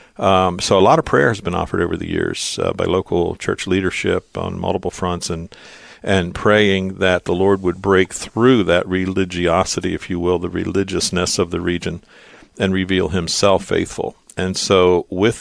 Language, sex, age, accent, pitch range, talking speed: English, male, 50-69, American, 85-95 Hz, 180 wpm